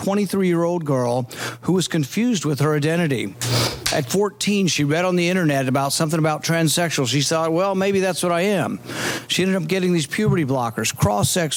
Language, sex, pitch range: English, male, 125-165 Hz